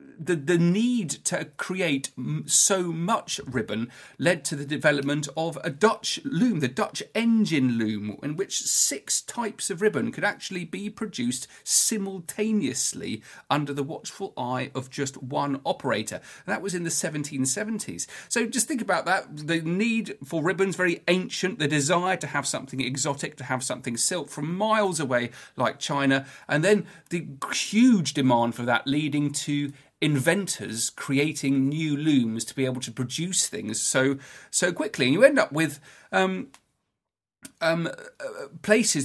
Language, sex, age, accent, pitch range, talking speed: English, male, 40-59, British, 130-185 Hz, 155 wpm